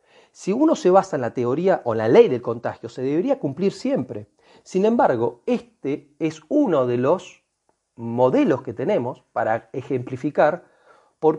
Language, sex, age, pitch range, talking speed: Spanish, male, 40-59, 125-175 Hz, 155 wpm